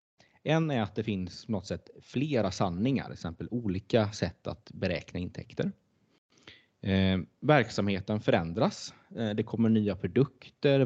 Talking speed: 140 wpm